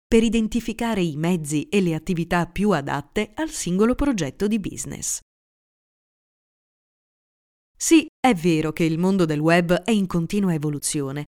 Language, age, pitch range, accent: Italian, 30-49, 170-240 Hz, native